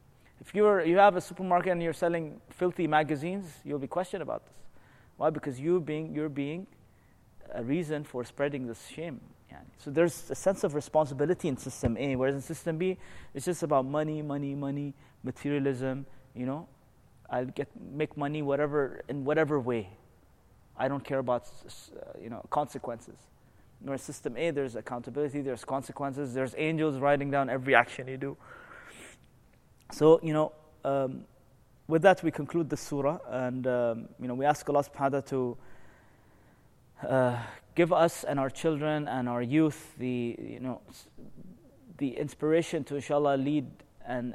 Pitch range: 130-155 Hz